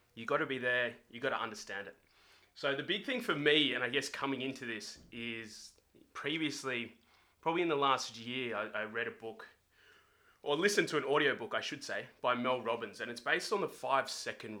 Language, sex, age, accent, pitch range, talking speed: English, male, 20-39, Australian, 115-140 Hz, 210 wpm